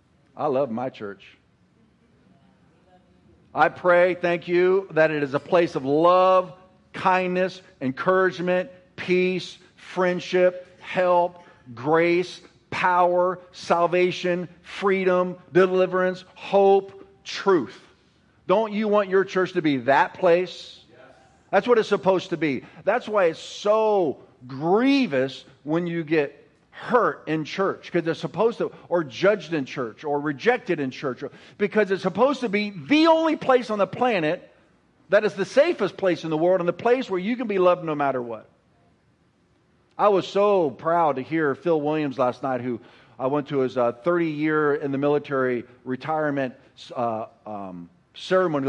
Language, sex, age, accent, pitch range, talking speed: English, male, 50-69, American, 140-185 Hz, 150 wpm